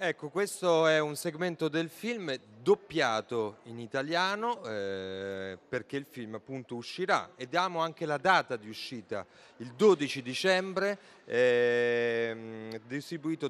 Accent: native